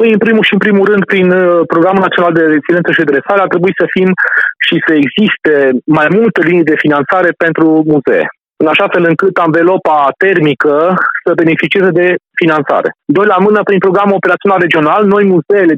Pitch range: 165-210 Hz